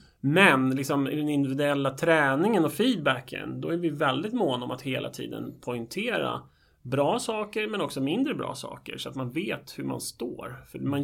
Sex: male